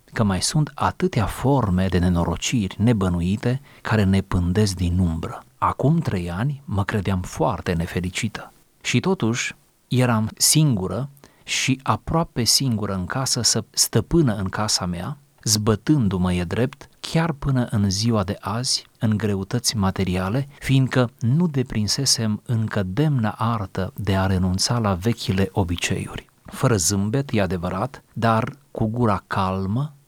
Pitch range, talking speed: 95-130 Hz, 130 wpm